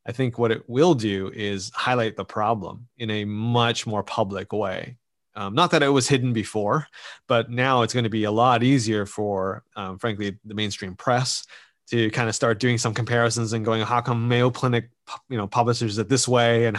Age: 30-49